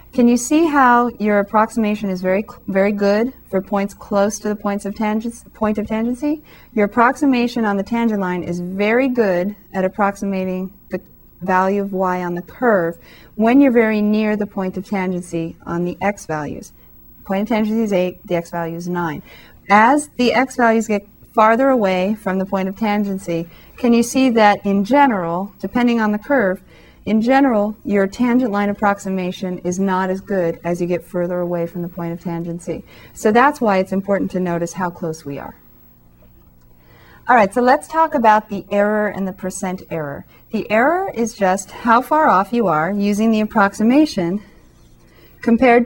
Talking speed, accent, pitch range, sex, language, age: 180 wpm, American, 180-225 Hz, female, English, 40-59